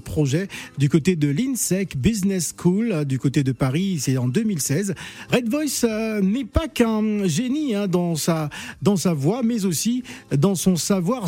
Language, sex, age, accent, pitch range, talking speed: French, male, 50-69, French, 160-205 Hz, 160 wpm